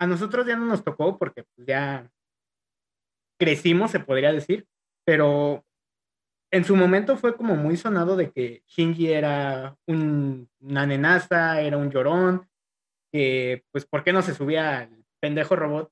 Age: 20-39